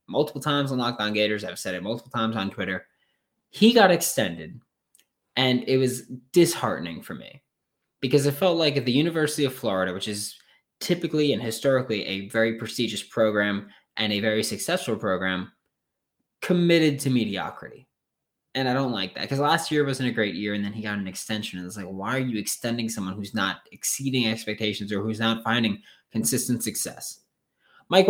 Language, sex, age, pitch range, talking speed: English, male, 20-39, 110-145 Hz, 180 wpm